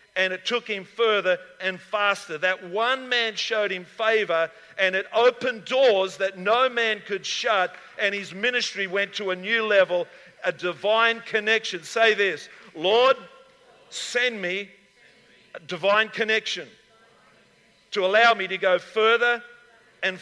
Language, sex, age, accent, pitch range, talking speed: English, male, 50-69, Australian, 185-230 Hz, 140 wpm